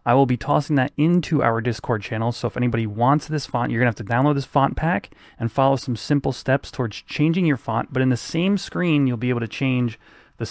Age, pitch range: 30-49, 115-140 Hz